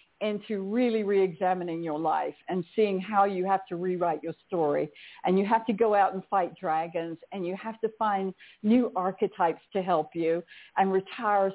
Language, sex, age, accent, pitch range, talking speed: English, female, 60-79, American, 175-220 Hz, 180 wpm